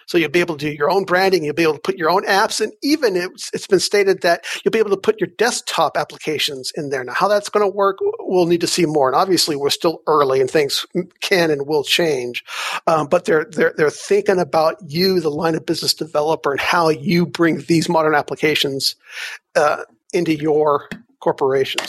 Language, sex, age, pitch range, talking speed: English, male, 50-69, 160-195 Hz, 220 wpm